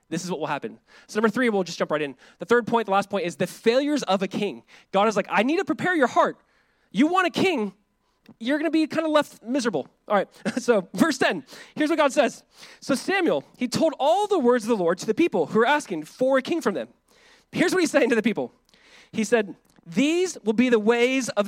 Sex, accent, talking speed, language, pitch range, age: male, American, 255 wpm, English, 210-275 Hz, 20-39